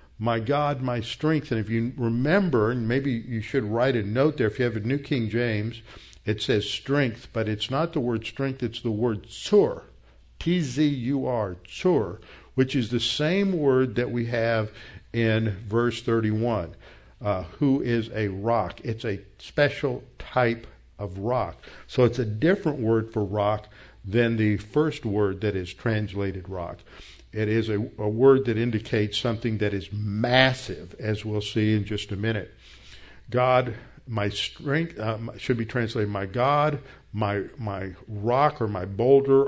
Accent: American